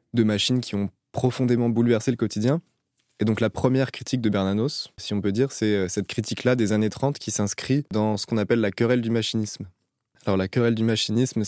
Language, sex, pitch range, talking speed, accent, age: French, male, 105-120 Hz, 210 wpm, French, 20-39